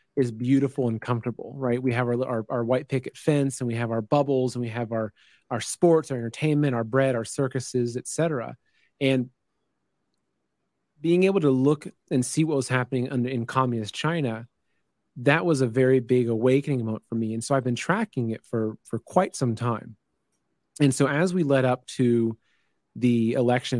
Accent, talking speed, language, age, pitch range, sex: American, 185 wpm, English, 30-49, 120-140 Hz, male